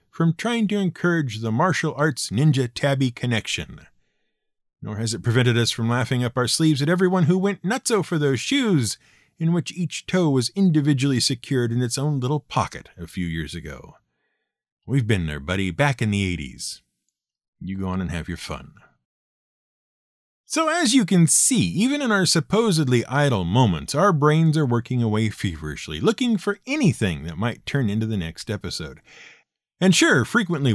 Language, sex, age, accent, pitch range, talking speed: English, male, 50-69, American, 115-180 Hz, 175 wpm